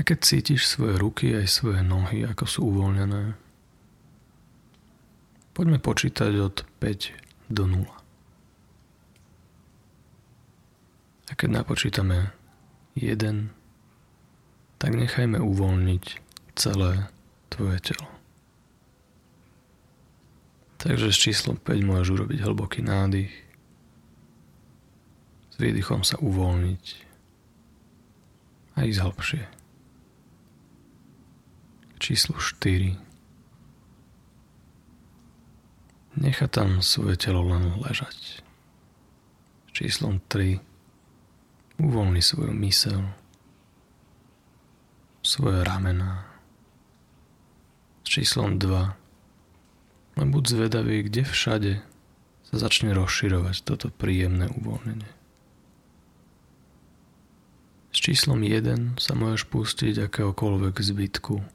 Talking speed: 75 wpm